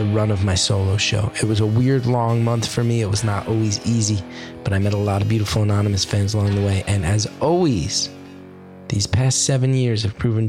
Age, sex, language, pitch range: 20-39, male, English, 95-120 Hz